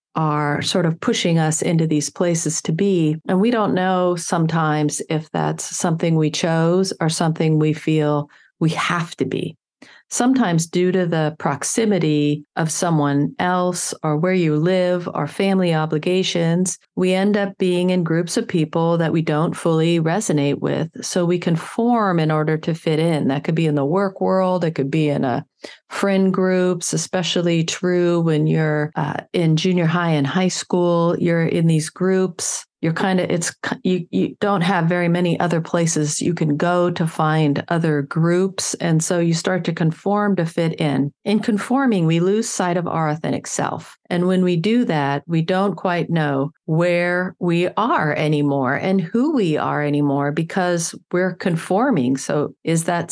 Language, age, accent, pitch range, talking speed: English, 40-59, American, 155-185 Hz, 175 wpm